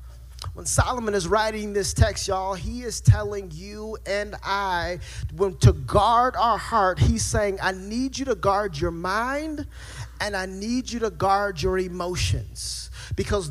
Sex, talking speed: male, 155 wpm